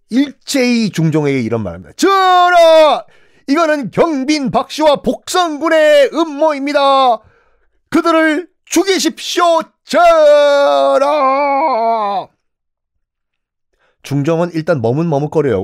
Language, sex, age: Korean, male, 40-59